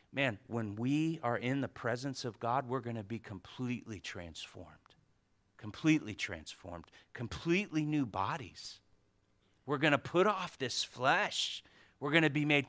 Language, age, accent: English, 40-59, American